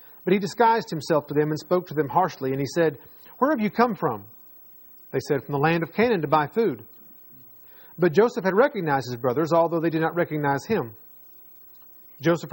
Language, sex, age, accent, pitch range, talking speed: English, male, 40-59, American, 145-210 Hz, 200 wpm